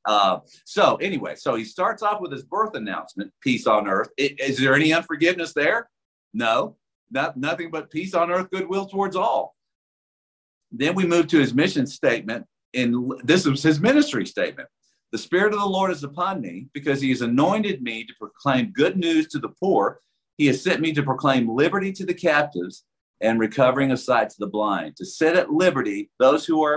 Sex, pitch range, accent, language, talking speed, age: male, 115-180 Hz, American, English, 195 wpm, 50-69